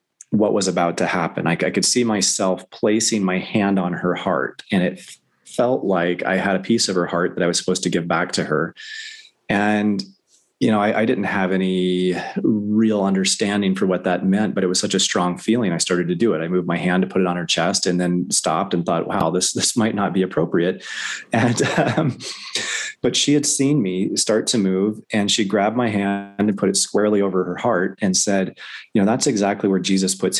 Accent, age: American, 30-49